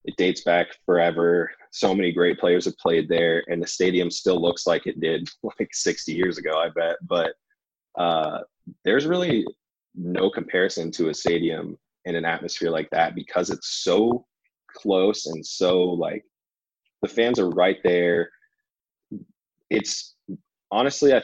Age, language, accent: 20-39, English, American